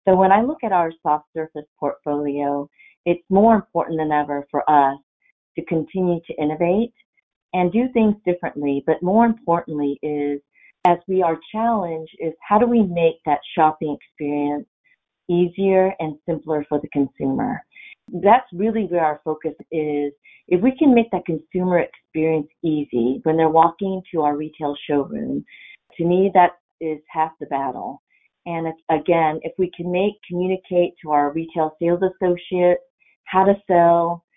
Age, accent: 40-59, American